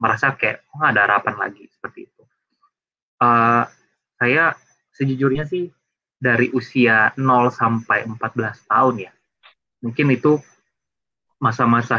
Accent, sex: native, male